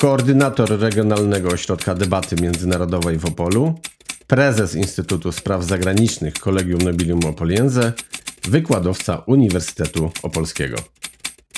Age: 40-59